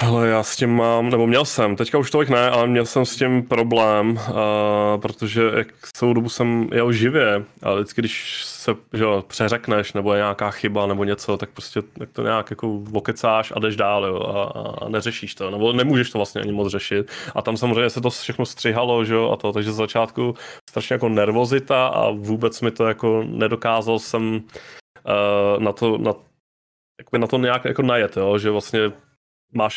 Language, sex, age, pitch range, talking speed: Czech, male, 20-39, 105-120 Hz, 195 wpm